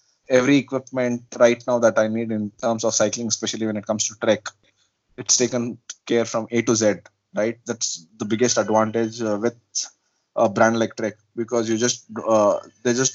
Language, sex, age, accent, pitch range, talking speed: English, male, 20-39, Indian, 110-125 Hz, 185 wpm